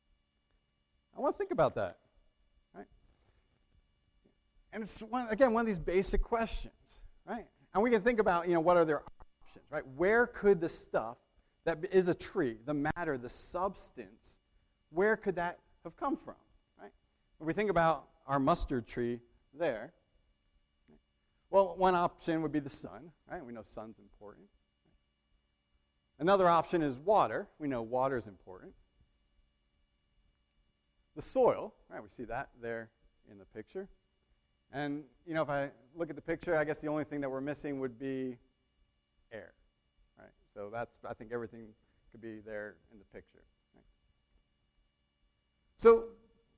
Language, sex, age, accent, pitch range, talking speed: English, male, 40-59, American, 120-180 Hz, 155 wpm